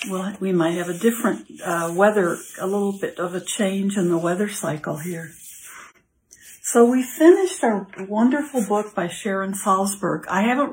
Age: 60-79